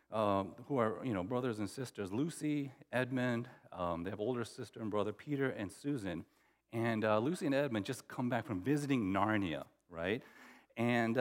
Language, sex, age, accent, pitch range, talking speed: English, male, 40-59, American, 115-185 Hz, 175 wpm